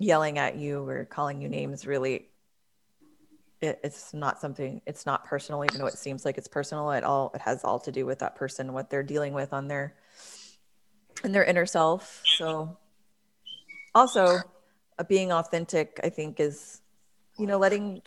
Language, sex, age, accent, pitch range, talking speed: English, female, 30-49, American, 155-215 Hz, 180 wpm